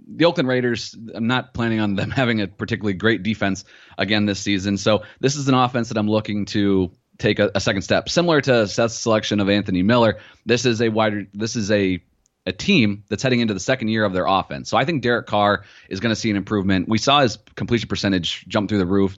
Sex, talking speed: male, 235 wpm